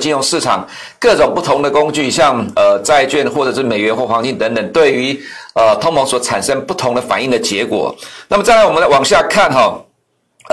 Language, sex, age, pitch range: Chinese, male, 60-79, 130-170 Hz